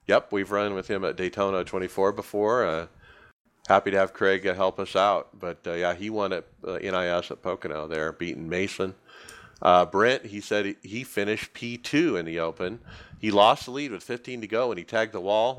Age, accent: 50-69, American